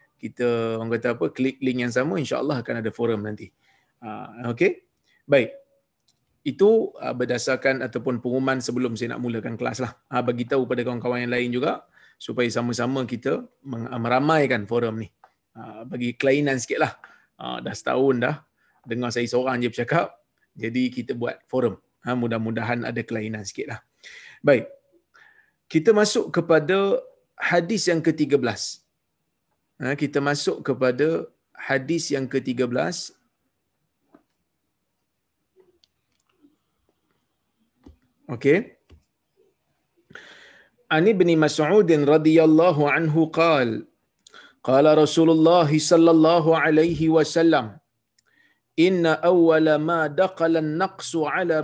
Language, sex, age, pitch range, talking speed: Malayalam, male, 30-49, 125-170 Hz, 110 wpm